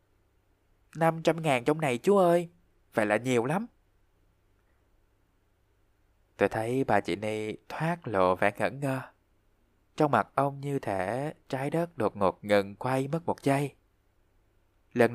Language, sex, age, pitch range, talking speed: Vietnamese, male, 20-39, 95-135 Hz, 140 wpm